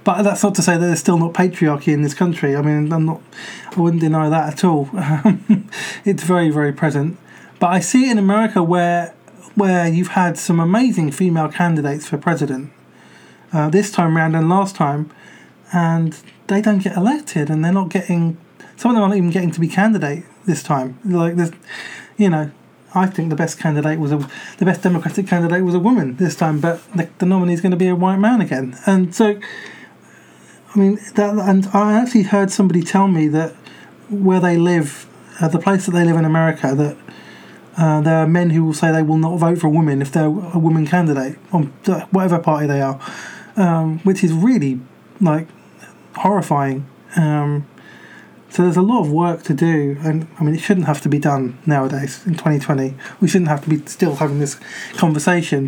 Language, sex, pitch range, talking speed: English, male, 155-190 Hz, 200 wpm